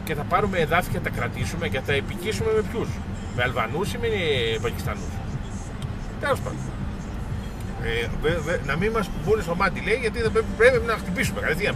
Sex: male